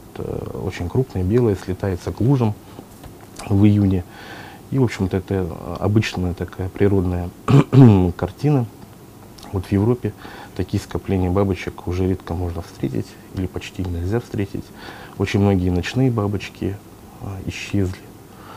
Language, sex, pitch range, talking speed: Russian, male, 90-105 Hz, 115 wpm